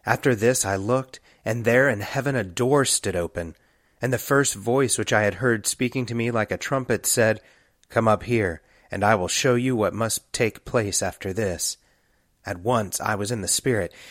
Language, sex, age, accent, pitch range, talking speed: English, male, 30-49, American, 105-130 Hz, 205 wpm